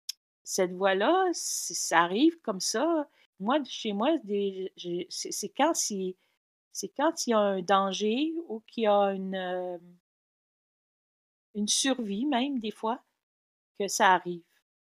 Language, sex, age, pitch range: French, female, 50-69, 190-255 Hz